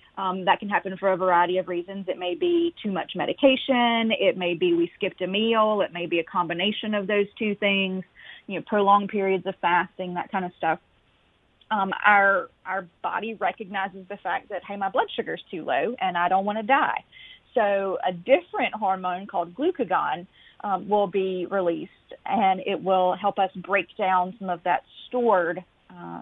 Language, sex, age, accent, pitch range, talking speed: English, female, 30-49, American, 185-210 Hz, 190 wpm